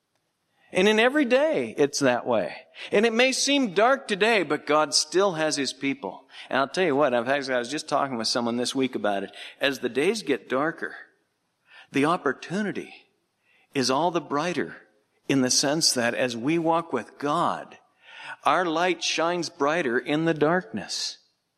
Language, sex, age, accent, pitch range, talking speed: English, male, 50-69, American, 130-215 Hz, 175 wpm